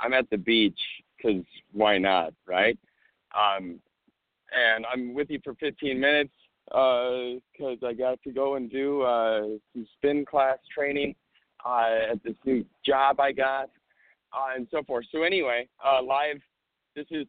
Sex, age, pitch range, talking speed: male, 50-69, 125-160 Hz, 160 wpm